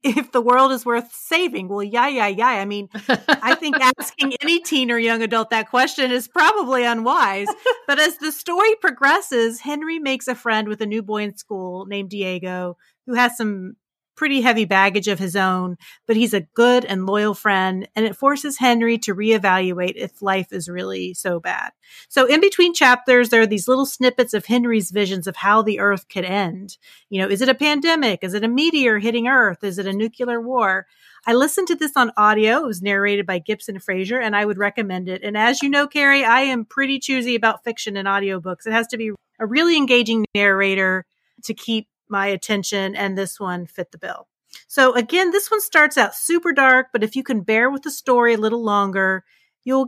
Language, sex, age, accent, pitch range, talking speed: English, female, 30-49, American, 200-260 Hz, 210 wpm